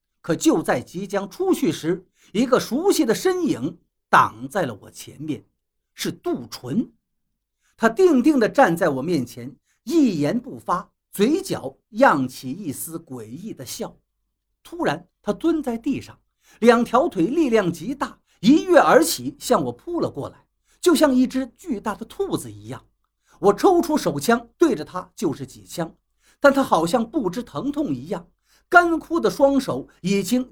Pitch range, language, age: 170-275 Hz, Chinese, 50-69